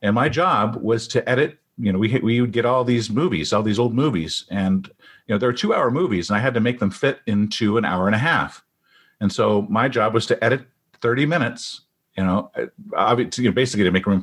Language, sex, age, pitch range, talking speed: English, male, 50-69, 105-145 Hz, 240 wpm